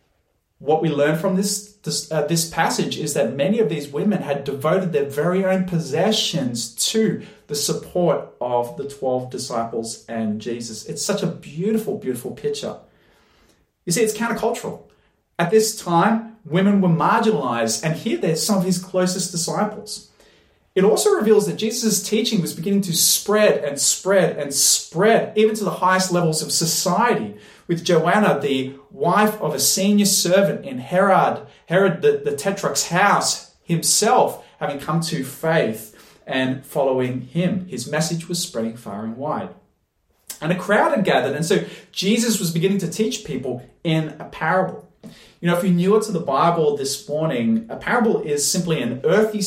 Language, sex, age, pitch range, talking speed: English, male, 30-49, 150-205 Hz, 165 wpm